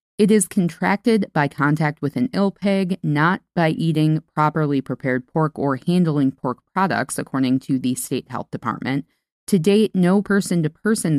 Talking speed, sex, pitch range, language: 155 wpm, female, 140-185 Hz, English